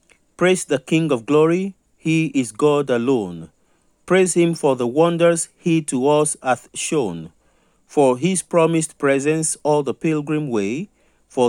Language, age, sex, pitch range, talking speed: English, 50-69, male, 130-170 Hz, 145 wpm